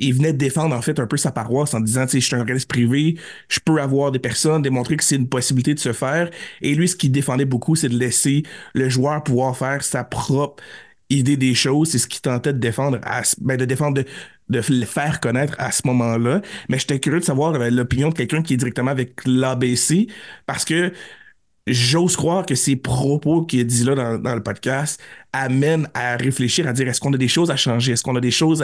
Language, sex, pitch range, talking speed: French, male, 125-150 Hz, 235 wpm